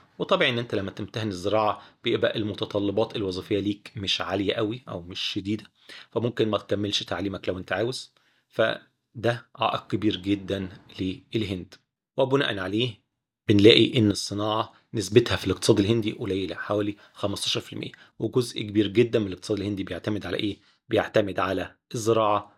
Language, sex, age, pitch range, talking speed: Arabic, male, 30-49, 100-115 Hz, 140 wpm